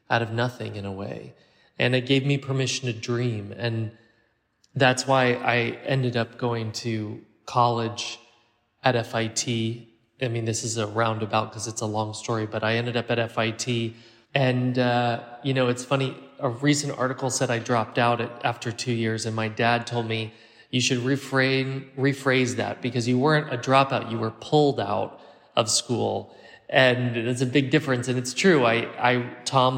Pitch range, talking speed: 115-130 Hz, 180 wpm